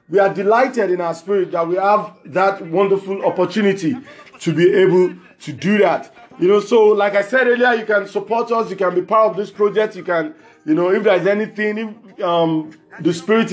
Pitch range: 180-215 Hz